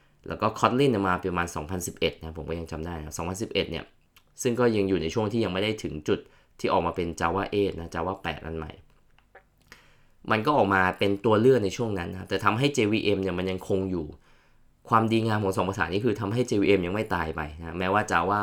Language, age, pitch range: Thai, 20-39, 85-110 Hz